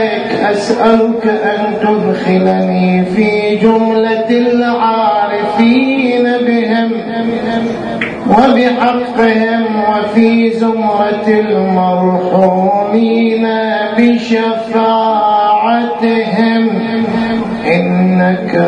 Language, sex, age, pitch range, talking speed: English, male, 40-59, 210-255 Hz, 40 wpm